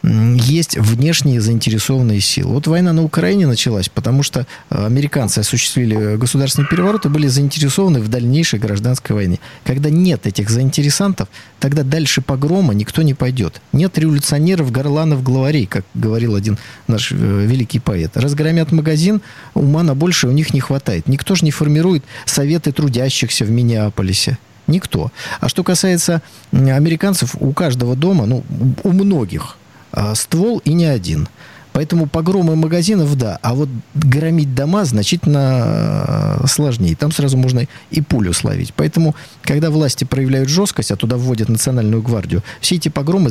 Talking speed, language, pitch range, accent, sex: 145 wpm, Russian, 115-160 Hz, native, male